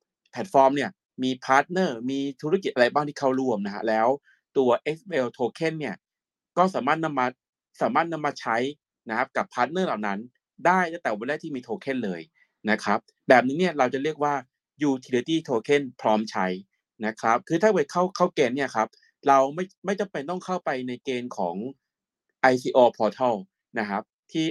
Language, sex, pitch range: Thai, male, 125-170 Hz